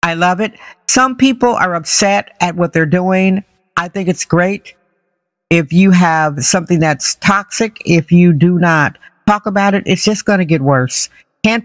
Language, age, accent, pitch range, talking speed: English, 60-79, American, 160-200 Hz, 175 wpm